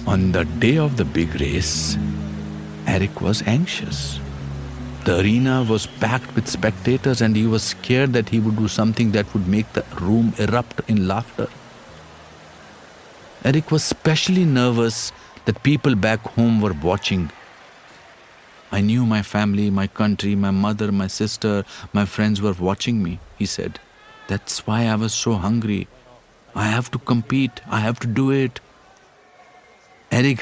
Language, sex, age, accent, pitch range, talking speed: English, male, 50-69, Indian, 95-125 Hz, 150 wpm